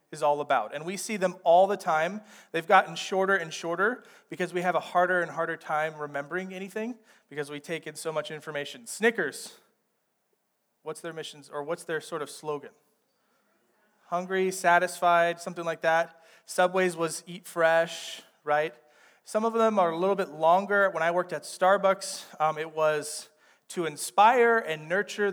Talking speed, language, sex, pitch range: 170 wpm, English, male, 155-200 Hz